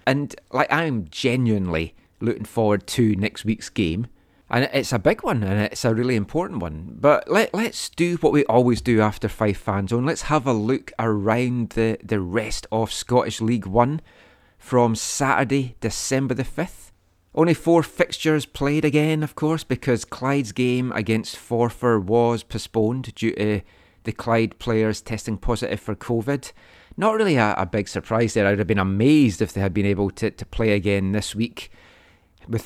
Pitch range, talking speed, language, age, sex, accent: 105-130 Hz, 180 wpm, English, 30-49, male, British